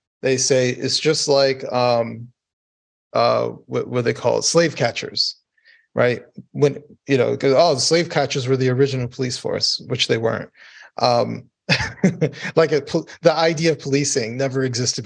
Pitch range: 125-145 Hz